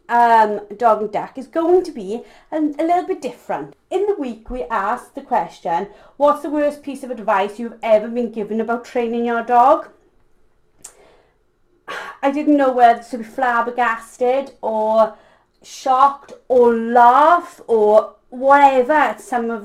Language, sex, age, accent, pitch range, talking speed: English, female, 30-49, British, 220-280 Hz, 155 wpm